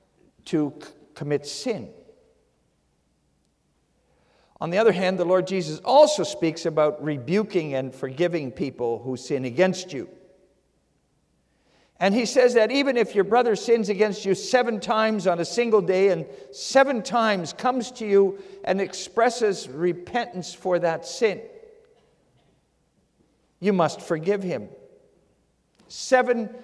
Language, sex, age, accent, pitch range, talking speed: English, male, 50-69, American, 155-235 Hz, 125 wpm